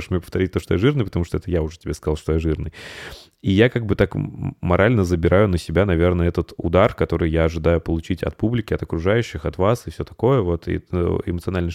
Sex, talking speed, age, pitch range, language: male, 220 wpm, 20-39, 80-100 Hz, Russian